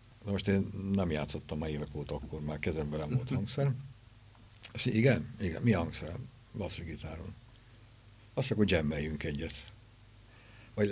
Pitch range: 80-110 Hz